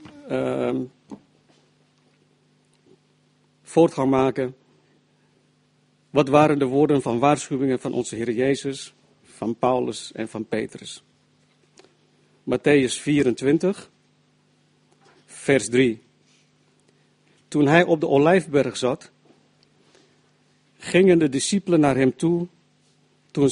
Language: Dutch